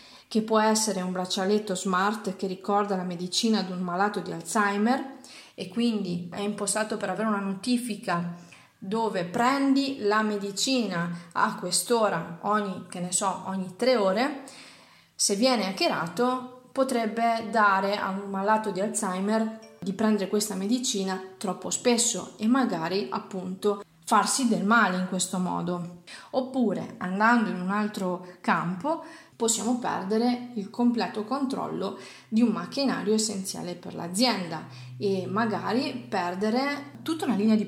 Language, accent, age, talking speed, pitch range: Italian, native, 30-49, 135 wpm, 190-245 Hz